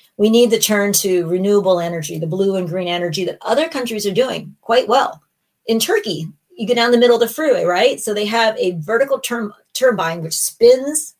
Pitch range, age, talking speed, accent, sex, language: 175-230 Hz, 40-59, 205 wpm, American, female, English